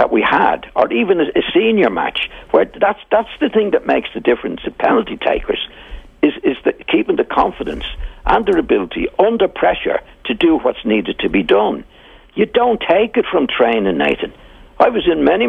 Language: English